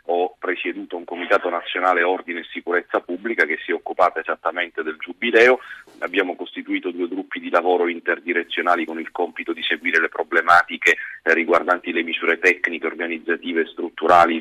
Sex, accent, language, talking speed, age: male, native, Italian, 155 wpm, 30-49